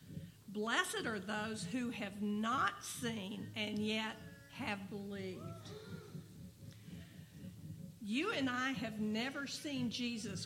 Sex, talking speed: female, 105 wpm